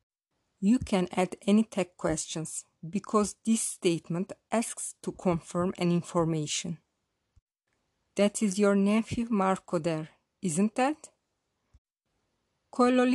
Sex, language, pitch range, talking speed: female, English, 175-225 Hz, 100 wpm